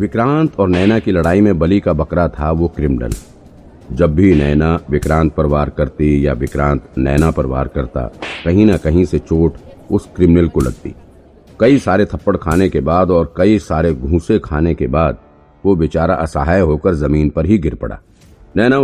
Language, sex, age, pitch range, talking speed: Hindi, male, 50-69, 75-95 Hz, 180 wpm